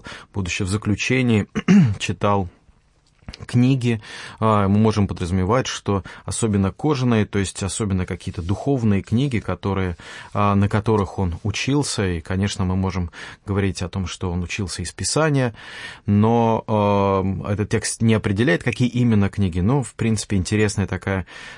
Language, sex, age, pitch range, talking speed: English, male, 30-49, 95-115 Hz, 135 wpm